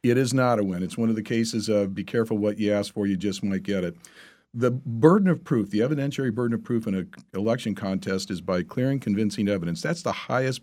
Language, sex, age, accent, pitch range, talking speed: English, male, 50-69, American, 100-120 Hz, 245 wpm